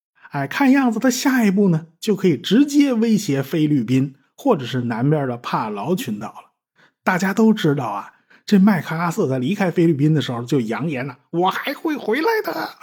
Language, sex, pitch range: Chinese, male, 160-255 Hz